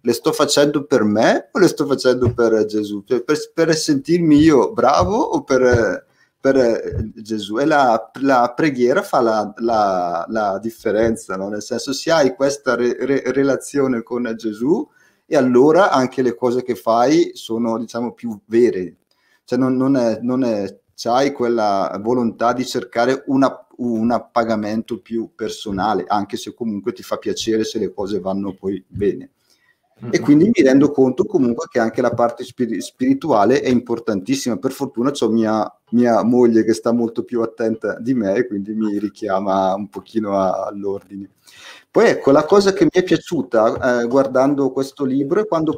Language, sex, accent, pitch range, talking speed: Italian, male, native, 110-135 Hz, 170 wpm